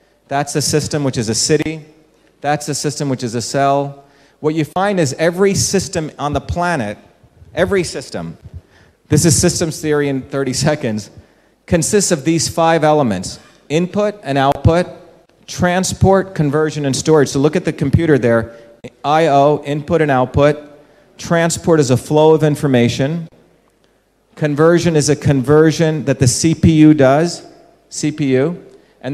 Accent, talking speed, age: American, 145 wpm, 40-59